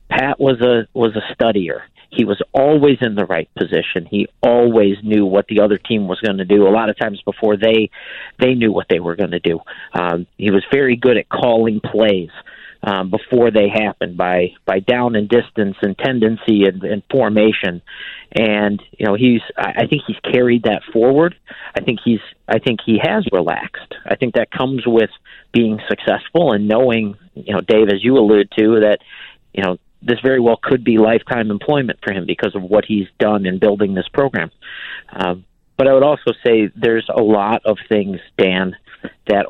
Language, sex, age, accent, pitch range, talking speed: English, male, 50-69, American, 100-120 Hz, 190 wpm